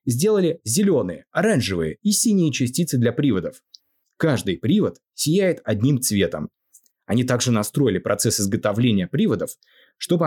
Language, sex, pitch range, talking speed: Russian, male, 105-165 Hz, 115 wpm